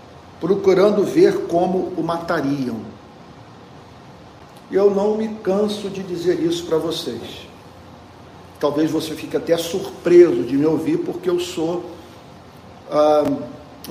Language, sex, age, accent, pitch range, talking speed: Portuguese, male, 50-69, Brazilian, 150-180 Hz, 115 wpm